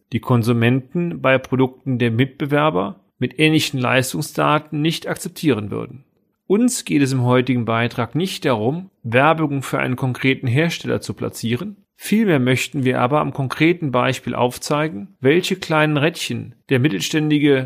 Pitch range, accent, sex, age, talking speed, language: 130-165 Hz, German, male, 40-59, 135 wpm, German